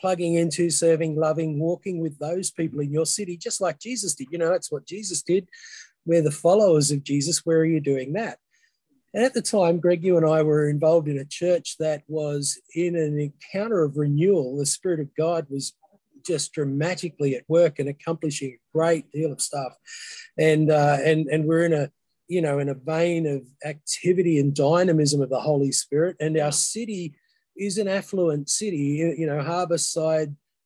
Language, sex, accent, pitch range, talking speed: English, male, Australian, 145-170 Hz, 190 wpm